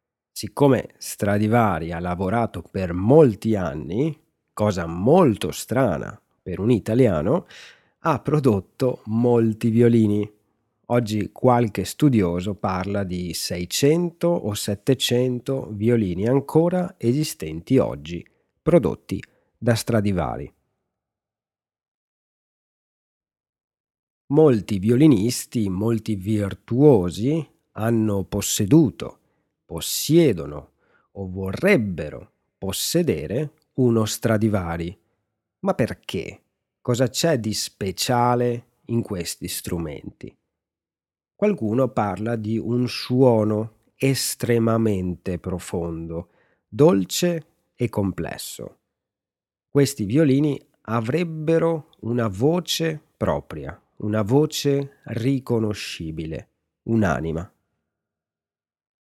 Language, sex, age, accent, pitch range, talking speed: Italian, male, 40-59, native, 95-135 Hz, 75 wpm